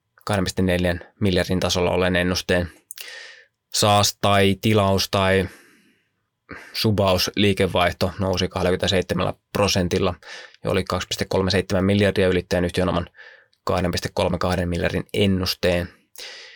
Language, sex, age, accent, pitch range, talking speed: Finnish, male, 20-39, native, 90-105 Hz, 85 wpm